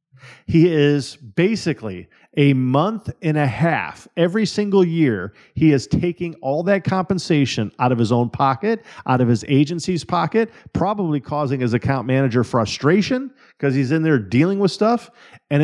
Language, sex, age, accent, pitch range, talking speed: English, male, 50-69, American, 120-175 Hz, 155 wpm